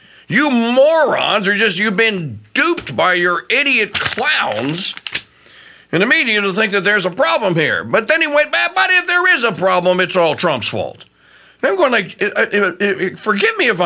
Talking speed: 180 wpm